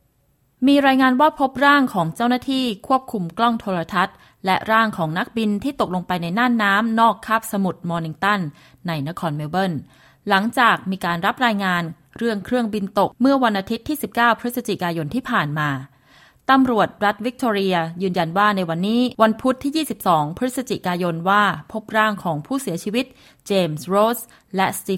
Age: 20-39